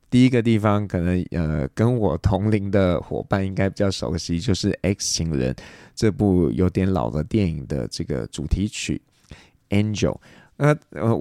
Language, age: Chinese, 20-39